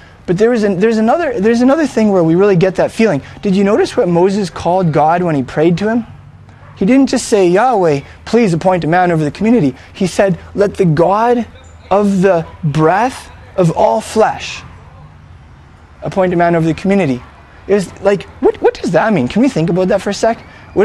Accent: American